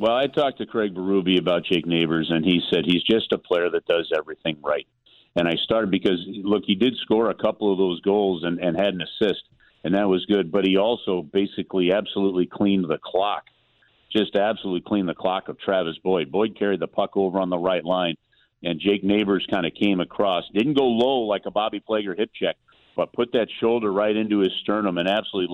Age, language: 50-69, English